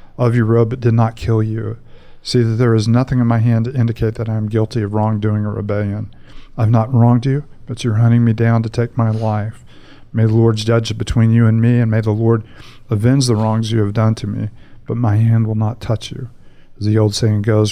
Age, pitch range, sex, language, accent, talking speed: 50-69, 110-120 Hz, male, English, American, 240 wpm